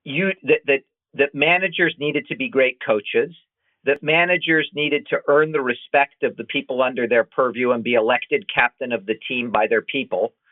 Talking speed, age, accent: 190 wpm, 50-69, American